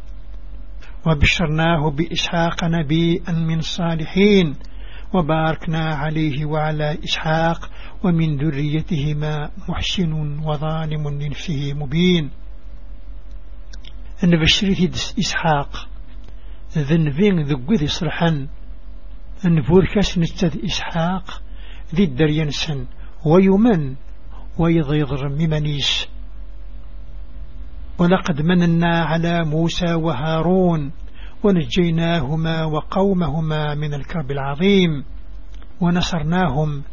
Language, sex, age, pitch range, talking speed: English, male, 60-79, 135-175 Hz, 45 wpm